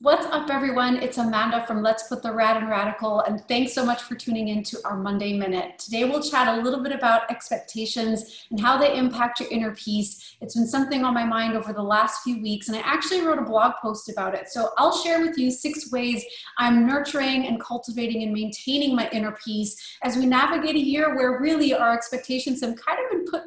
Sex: female